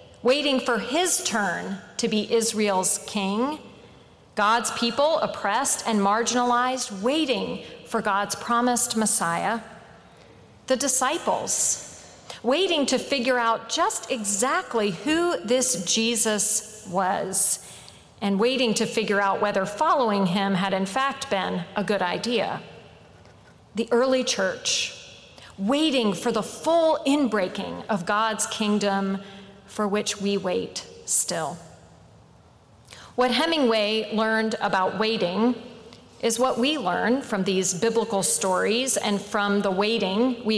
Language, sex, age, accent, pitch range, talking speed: English, female, 40-59, American, 200-255 Hz, 115 wpm